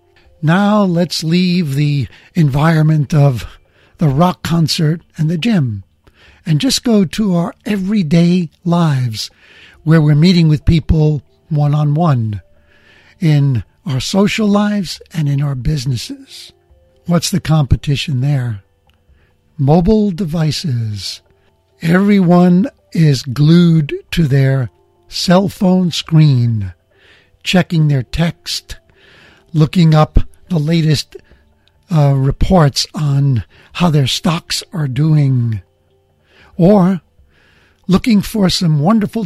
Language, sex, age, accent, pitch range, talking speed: English, male, 60-79, American, 125-175 Hz, 100 wpm